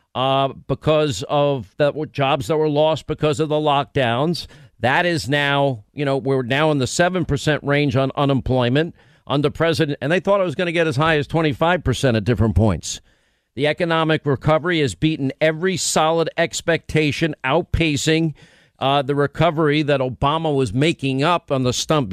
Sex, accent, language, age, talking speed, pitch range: male, American, English, 50-69, 165 wpm, 140-165 Hz